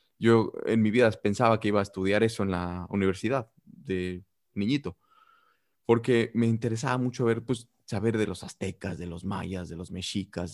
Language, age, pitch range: English, 30-49, 100-120 Hz